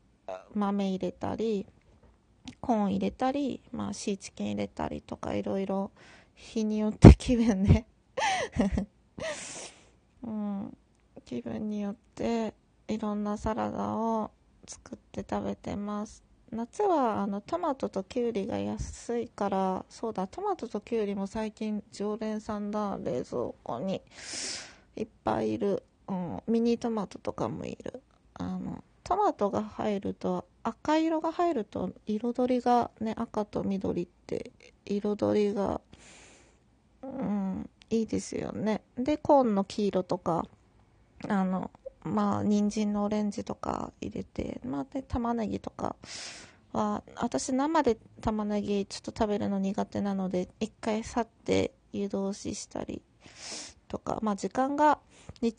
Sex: female